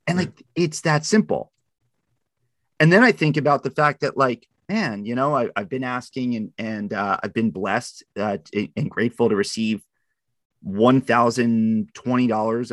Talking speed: 155 wpm